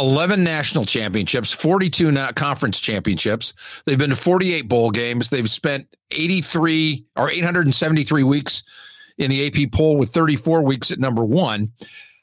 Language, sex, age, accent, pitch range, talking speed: English, male, 50-69, American, 125-160 Hz, 135 wpm